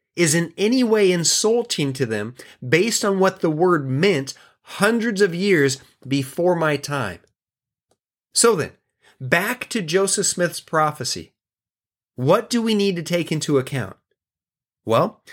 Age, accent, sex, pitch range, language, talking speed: 30-49, American, male, 140-195 Hz, English, 135 wpm